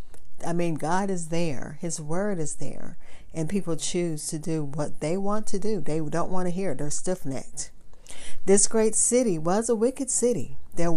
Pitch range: 145-195 Hz